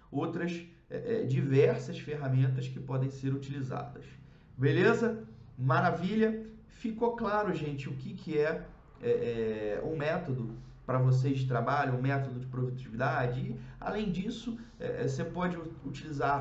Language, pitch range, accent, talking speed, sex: Portuguese, 130-165 Hz, Brazilian, 115 wpm, male